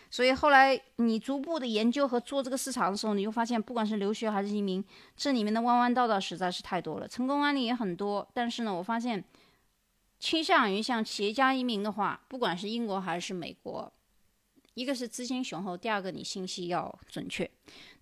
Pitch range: 185-250 Hz